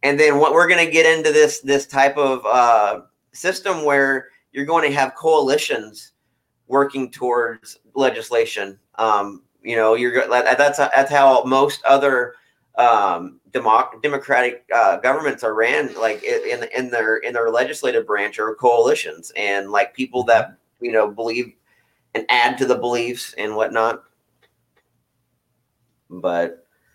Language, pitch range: English, 120-140 Hz